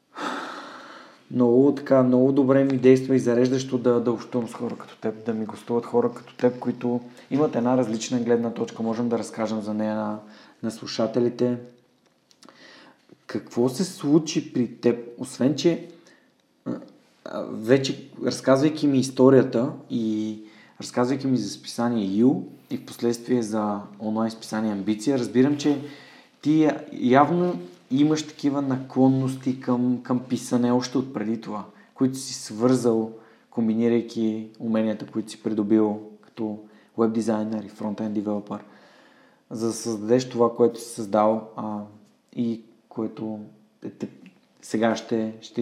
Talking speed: 130 wpm